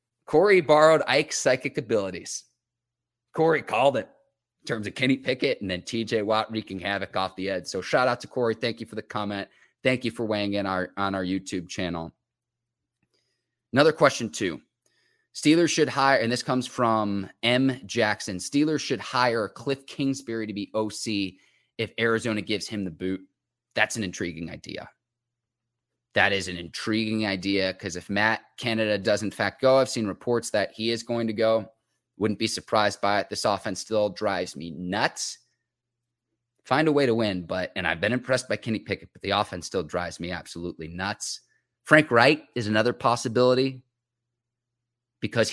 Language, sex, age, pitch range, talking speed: English, male, 30-49, 100-125 Hz, 175 wpm